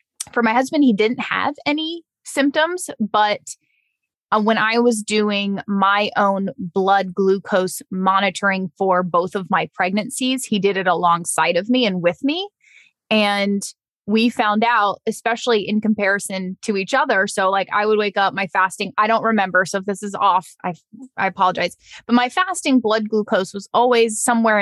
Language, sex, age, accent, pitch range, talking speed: English, female, 20-39, American, 195-250 Hz, 170 wpm